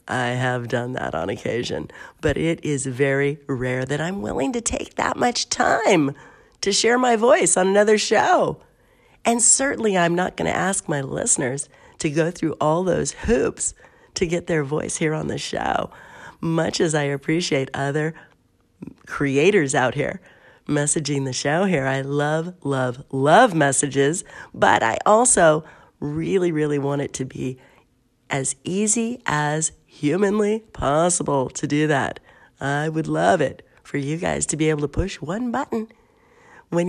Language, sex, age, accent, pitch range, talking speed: English, female, 40-59, American, 140-200 Hz, 160 wpm